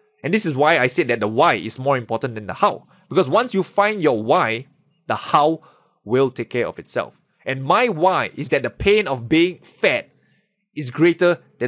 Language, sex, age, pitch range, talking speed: English, male, 20-39, 135-200 Hz, 210 wpm